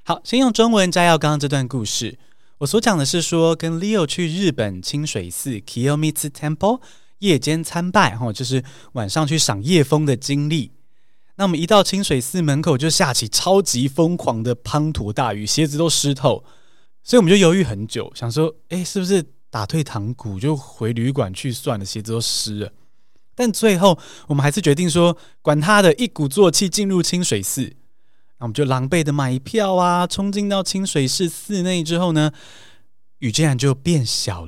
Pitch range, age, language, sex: 125-180 Hz, 20-39, Chinese, male